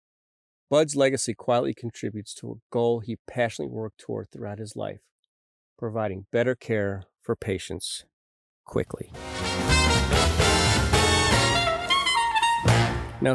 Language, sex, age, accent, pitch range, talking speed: English, male, 40-59, American, 100-125 Hz, 95 wpm